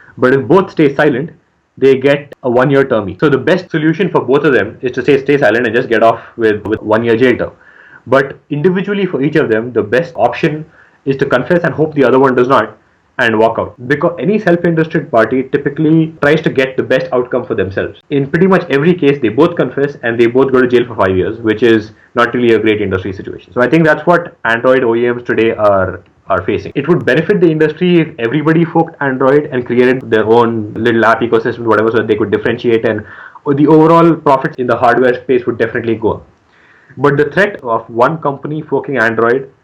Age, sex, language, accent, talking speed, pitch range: 20-39, male, English, Indian, 220 wpm, 120-160 Hz